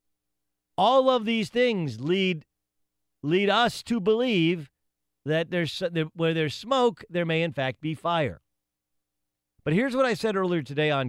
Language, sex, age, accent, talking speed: English, male, 40-59, American, 150 wpm